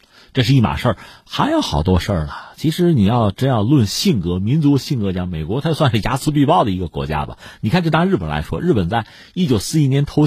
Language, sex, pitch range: Chinese, male, 95-150 Hz